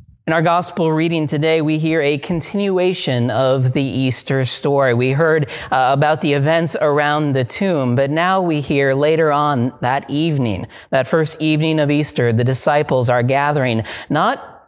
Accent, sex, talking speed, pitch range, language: American, male, 165 wpm, 125-160 Hz, English